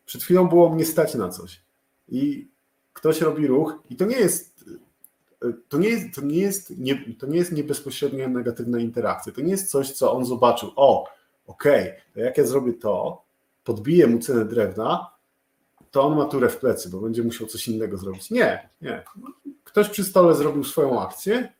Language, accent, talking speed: Polish, native, 180 wpm